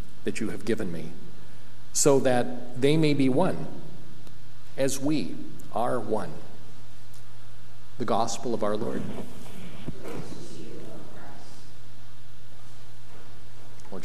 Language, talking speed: English, 90 wpm